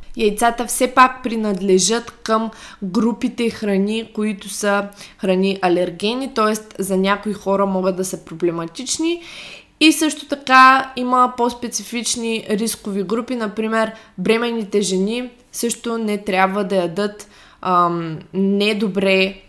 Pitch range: 195-235 Hz